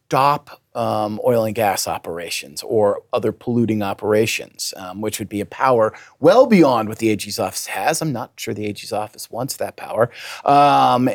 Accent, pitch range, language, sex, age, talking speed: American, 105-125 Hz, English, male, 40-59, 180 wpm